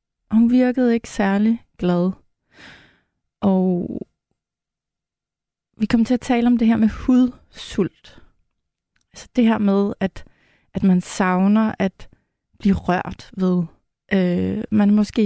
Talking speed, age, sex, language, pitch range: 120 wpm, 30-49, female, Danish, 185-225 Hz